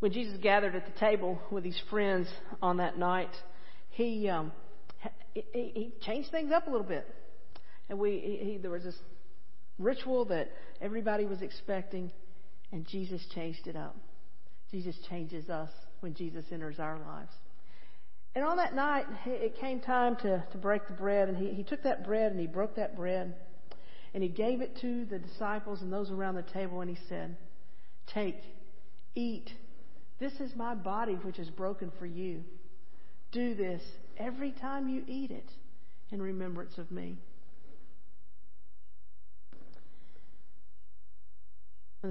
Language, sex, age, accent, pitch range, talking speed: English, female, 50-69, American, 180-215 Hz, 155 wpm